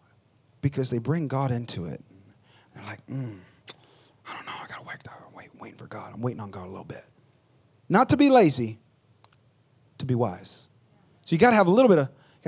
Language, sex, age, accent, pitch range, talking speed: English, male, 30-49, American, 140-205 Hz, 195 wpm